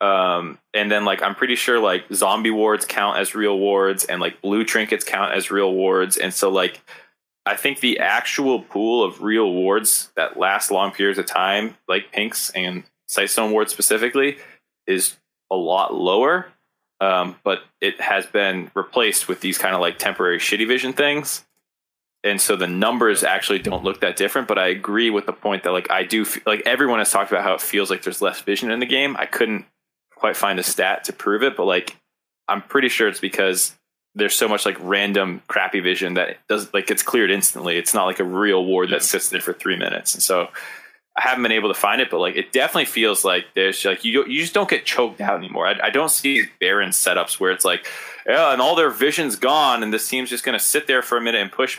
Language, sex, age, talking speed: English, male, 20-39, 220 wpm